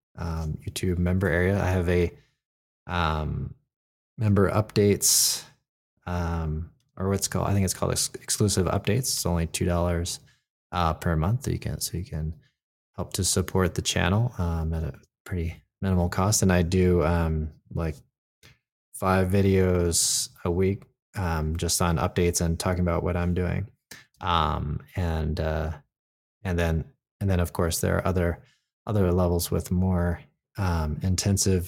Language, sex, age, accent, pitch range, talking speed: English, male, 20-39, American, 85-100 Hz, 155 wpm